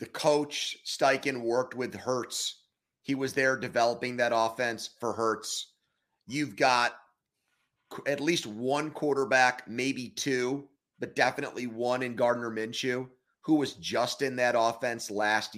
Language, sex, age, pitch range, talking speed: English, male, 30-49, 110-135 Hz, 135 wpm